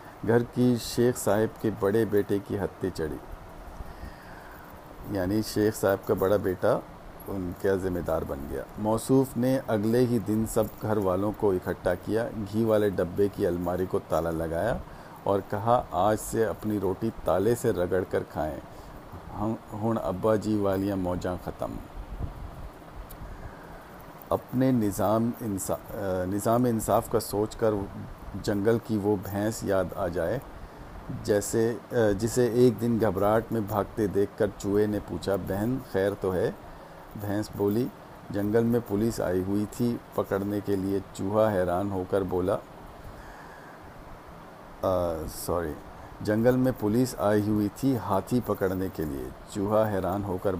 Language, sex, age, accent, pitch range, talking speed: English, male, 50-69, Indian, 95-110 Hz, 135 wpm